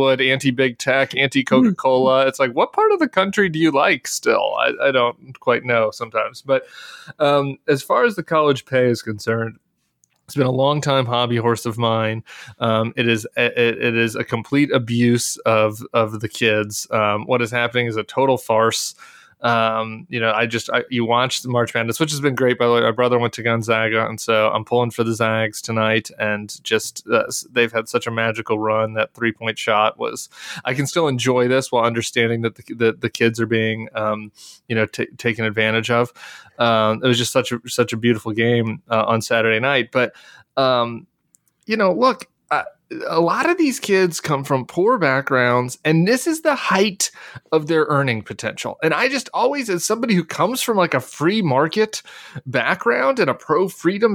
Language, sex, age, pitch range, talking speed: English, male, 20-39, 115-165 Hz, 200 wpm